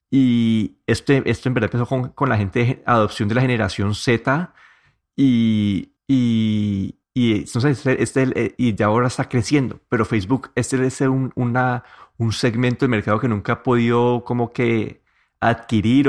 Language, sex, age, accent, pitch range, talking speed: Spanish, male, 30-49, Colombian, 115-130 Hz, 155 wpm